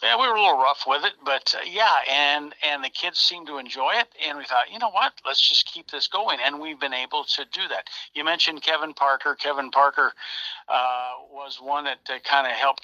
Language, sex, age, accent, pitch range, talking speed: English, male, 60-79, American, 135-165 Hz, 240 wpm